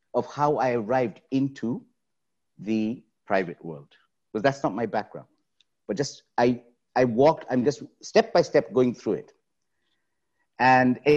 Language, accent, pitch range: English, Indian, 110-145 Hz